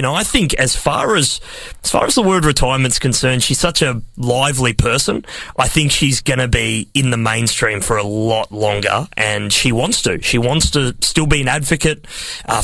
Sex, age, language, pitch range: male, 30-49, English, 120-145 Hz